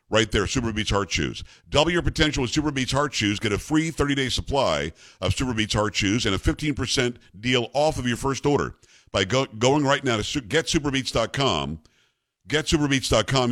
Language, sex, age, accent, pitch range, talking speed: English, male, 50-69, American, 110-145 Hz, 185 wpm